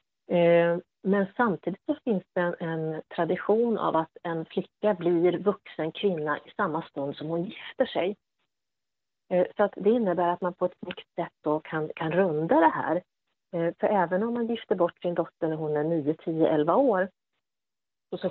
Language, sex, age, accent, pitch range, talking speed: Swedish, female, 30-49, native, 155-200 Hz, 175 wpm